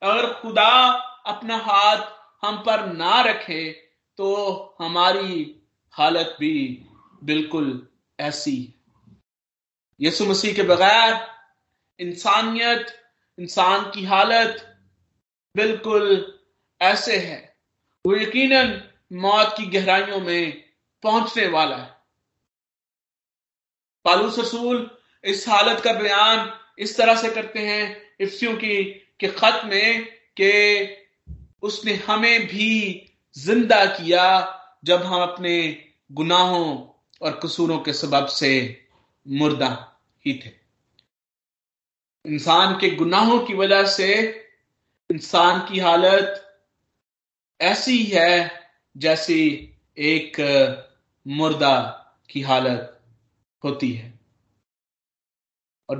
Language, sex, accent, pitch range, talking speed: Hindi, male, native, 155-215 Hz, 90 wpm